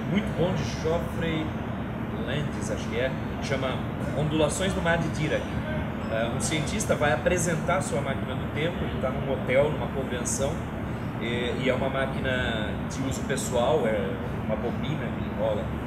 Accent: Brazilian